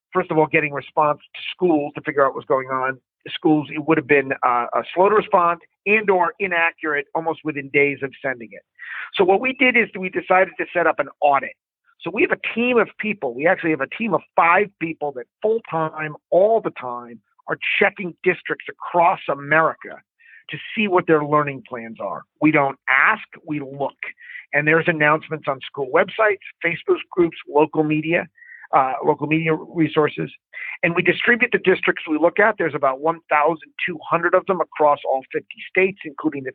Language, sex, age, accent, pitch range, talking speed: English, male, 50-69, American, 150-195 Hz, 190 wpm